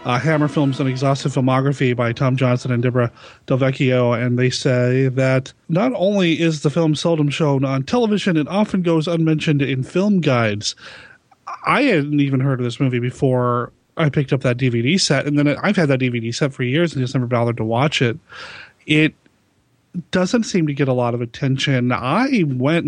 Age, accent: 30-49, American